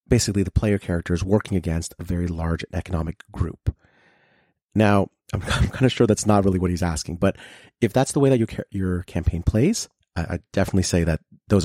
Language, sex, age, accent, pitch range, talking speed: English, male, 30-49, American, 85-110 Hz, 205 wpm